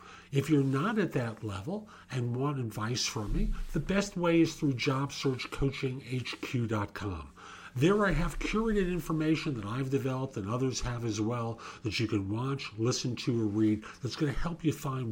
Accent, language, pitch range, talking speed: American, English, 115-165 Hz, 175 wpm